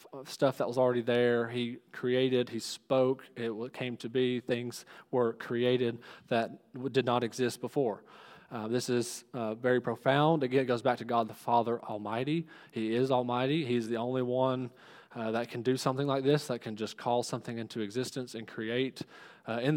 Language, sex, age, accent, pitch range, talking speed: English, male, 20-39, American, 115-130 Hz, 190 wpm